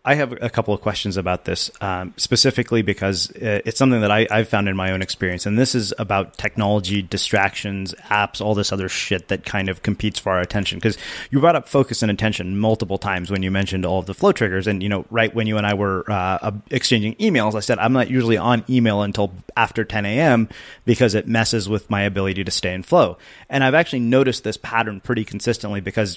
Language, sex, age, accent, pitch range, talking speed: English, male, 30-49, American, 100-125 Hz, 225 wpm